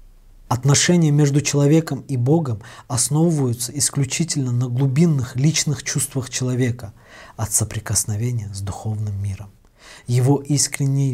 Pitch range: 110-135 Hz